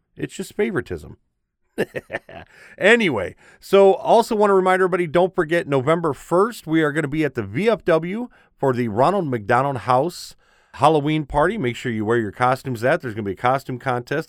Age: 30-49